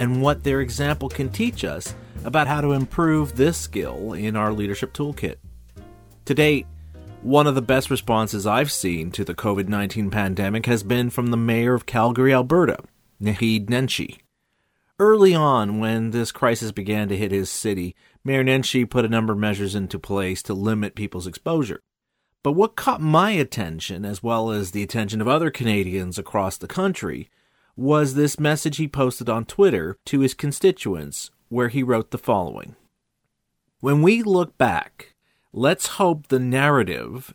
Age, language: 40-59, English